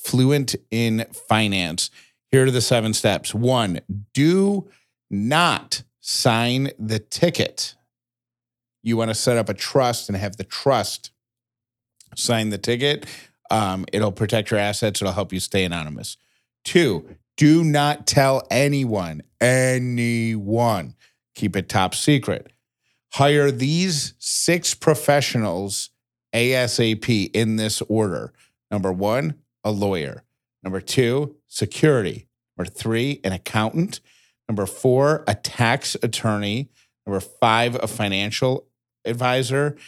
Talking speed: 115 wpm